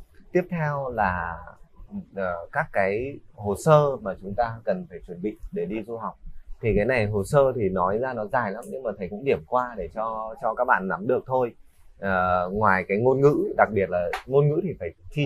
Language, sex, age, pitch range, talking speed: Vietnamese, male, 20-39, 100-140 Hz, 225 wpm